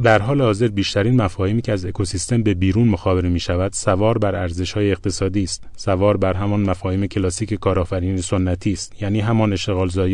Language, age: Persian, 30-49